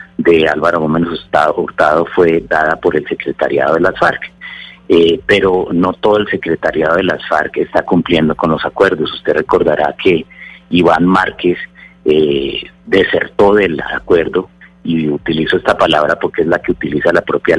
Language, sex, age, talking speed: Spanish, male, 40-59, 155 wpm